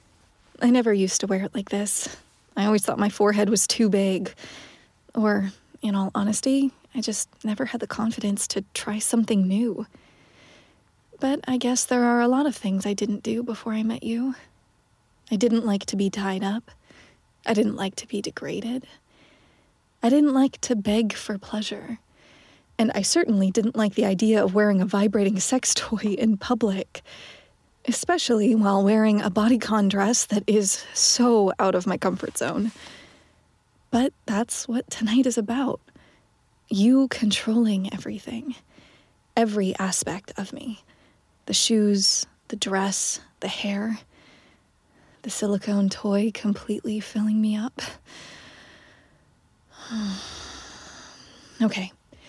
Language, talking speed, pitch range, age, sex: English, 140 wpm, 205-235 Hz, 20-39, female